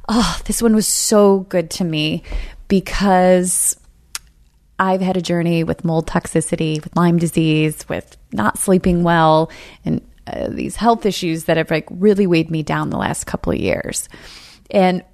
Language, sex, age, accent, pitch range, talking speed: English, female, 30-49, American, 170-220 Hz, 165 wpm